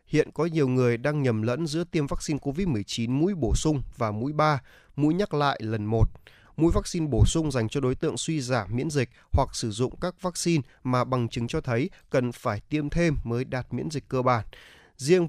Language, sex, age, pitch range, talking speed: Vietnamese, male, 20-39, 120-155 Hz, 215 wpm